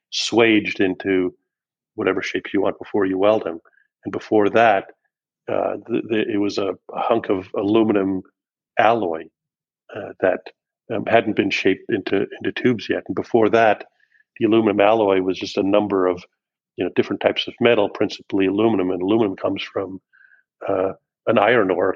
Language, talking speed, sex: English, 165 wpm, male